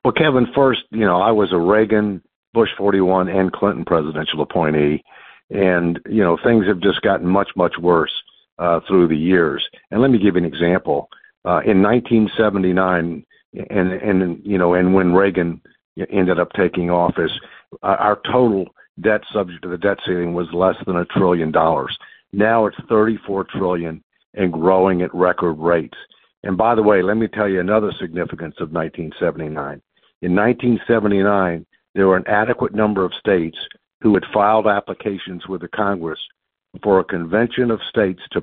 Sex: male